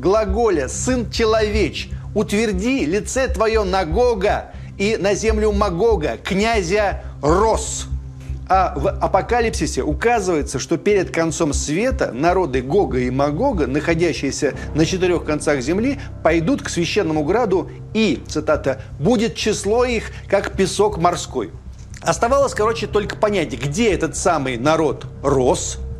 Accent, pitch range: native, 125-215 Hz